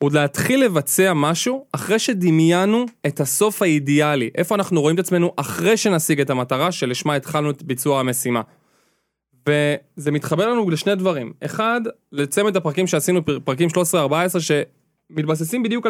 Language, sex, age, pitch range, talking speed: Hebrew, male, 20-39, 145-200 Hz, 135 wpm